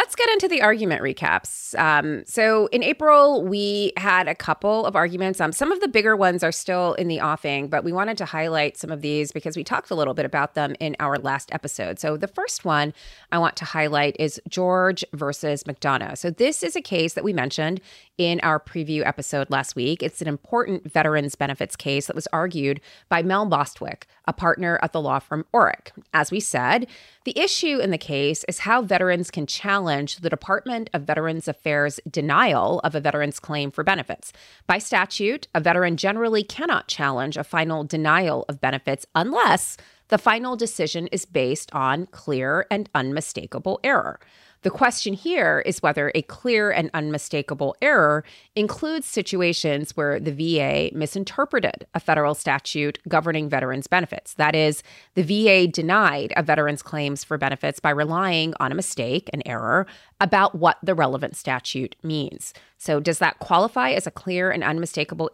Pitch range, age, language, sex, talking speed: 150-190 Hz, 30-49, English, female, 180 wpm